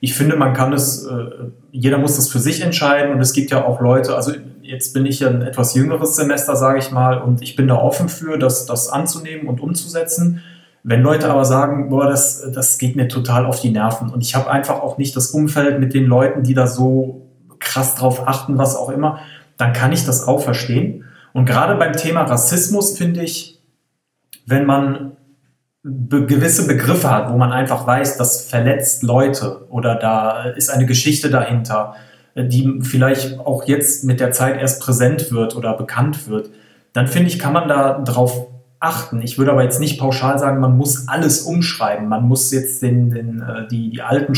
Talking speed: 195 wpm